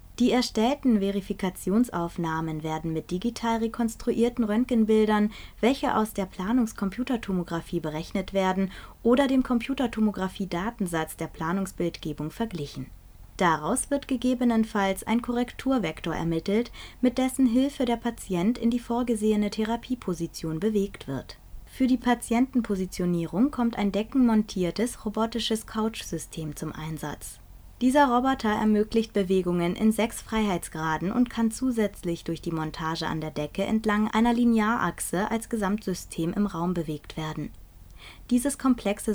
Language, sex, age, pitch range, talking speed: German, female, 20-39, 170-235 Hz, 115 wpm